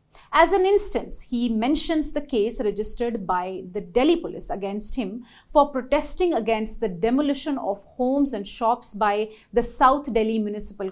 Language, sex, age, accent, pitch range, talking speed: English, female, 30-49, Indian, 220-280 Hz, 155 wpm